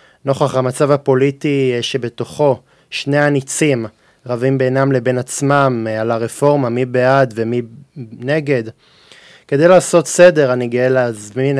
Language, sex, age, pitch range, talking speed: Hebrew, male, 20-39, 125-140 Hz, 115 wpm